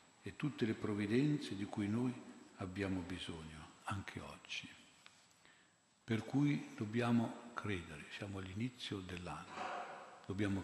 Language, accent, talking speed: Italian, native, 105 wpm